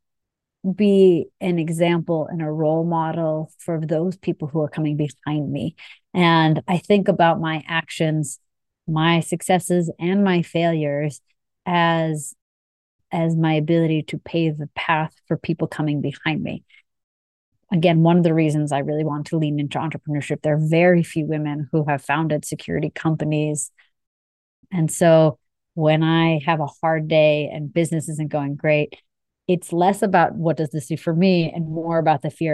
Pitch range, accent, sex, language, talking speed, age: 150-180 Hz, American, female, English, 160 wpm, 30-49